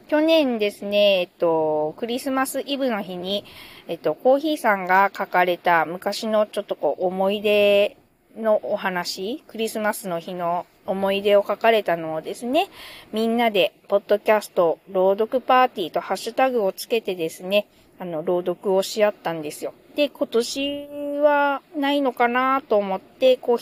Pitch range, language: 190-260 Hz, Japanese